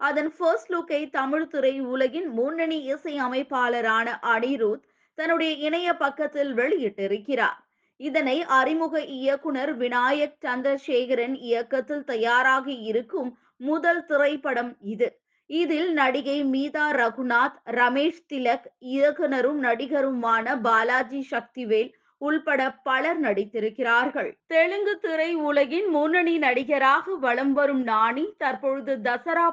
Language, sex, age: Tamil, female, 20-39